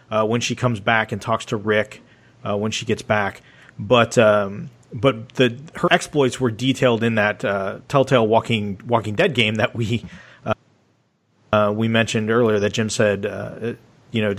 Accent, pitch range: American, 105-125 Hz